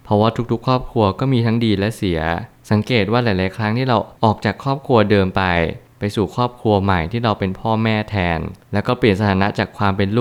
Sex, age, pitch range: male, 20-39, 95-115 Hz